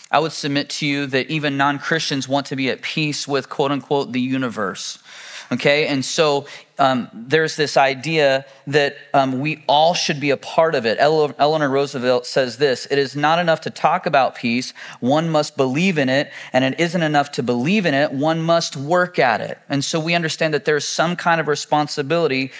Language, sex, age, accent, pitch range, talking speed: English, male, 30-49, American, 135-160 Hz, 200 wpm